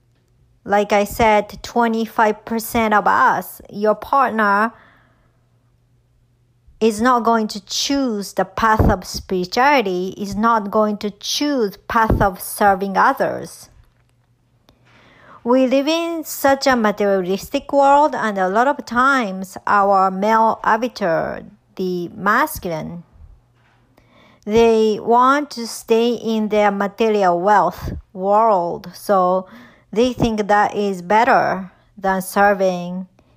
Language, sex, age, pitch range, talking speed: English, male, 50-69, 185-230 Hz, 110 wpm